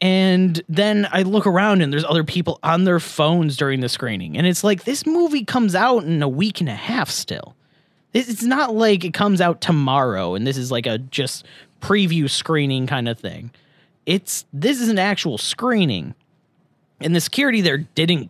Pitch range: 140-185 Hz